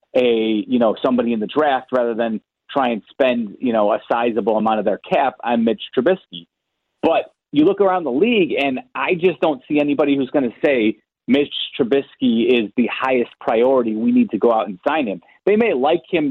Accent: American